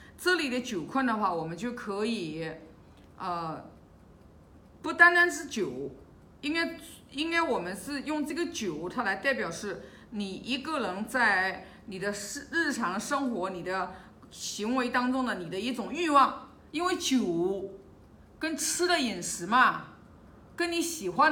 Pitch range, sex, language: 210-285 Hz, female, Chinese